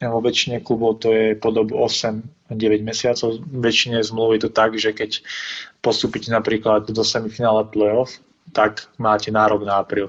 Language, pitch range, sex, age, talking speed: Slovak, 105-115 Hz, male, 20-39, 150 wpm